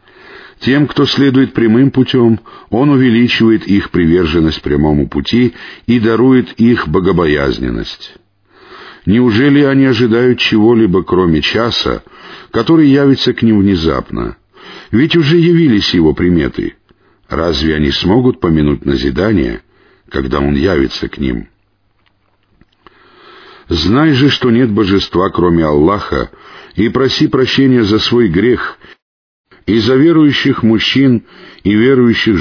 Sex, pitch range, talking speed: male, 90-130 Hz, 110 wpm